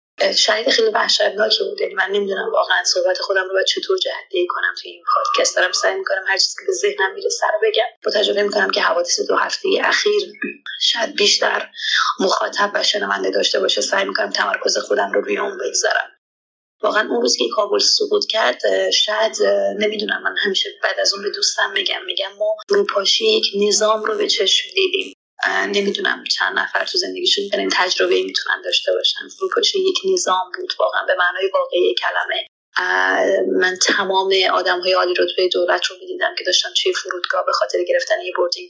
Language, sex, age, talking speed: Persian, female, 30-49, 170 wpm